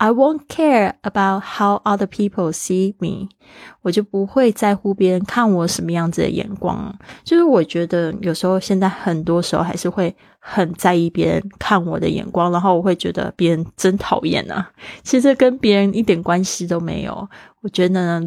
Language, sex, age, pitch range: Chinese, female, 20-39, 170-200 Hz